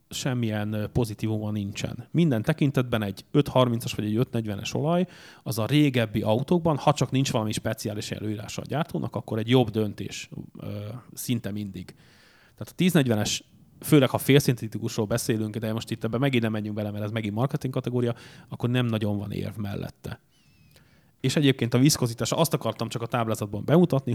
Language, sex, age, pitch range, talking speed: English, male, 30-49, 110-135 Hz, 165 wpm